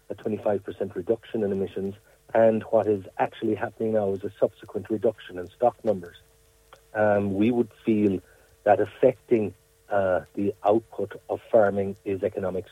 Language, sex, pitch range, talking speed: English, male, 100-120 Hz, 145 wpm